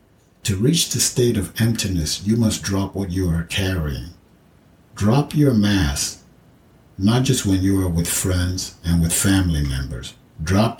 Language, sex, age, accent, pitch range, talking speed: English, male, 60-79, American, 85-105 Hz, 155 wpm